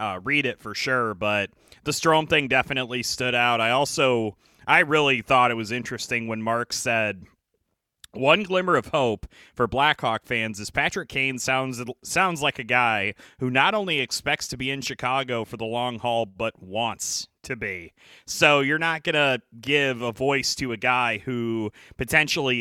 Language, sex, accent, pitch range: English, male, American, 115-135 Hz